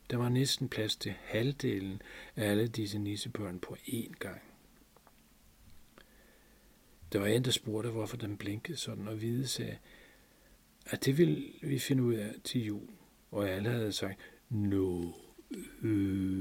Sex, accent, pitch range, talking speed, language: male, native, 95-120 Hz, 155 wpm, Danish